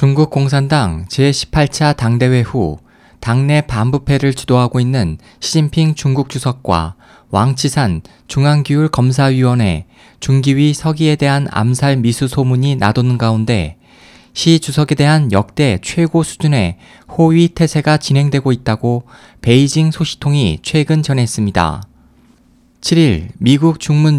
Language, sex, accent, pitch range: Korean, male, native, 120-155 Hz